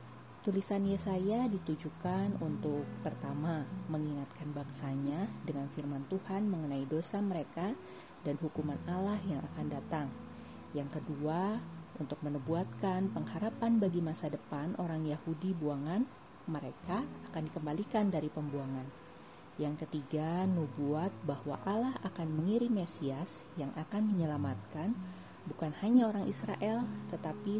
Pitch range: 145-195 Hz